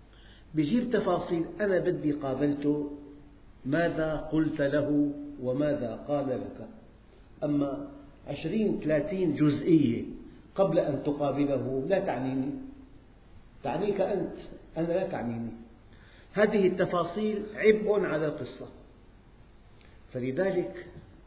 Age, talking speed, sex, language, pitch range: 50-69, 85 wpm, male, Arabic, 120-175 Hz